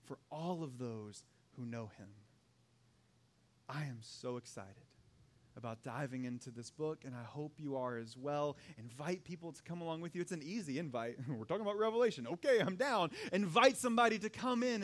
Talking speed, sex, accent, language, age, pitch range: 185 wpm, male, American, English, 30-49, 130-180 Hz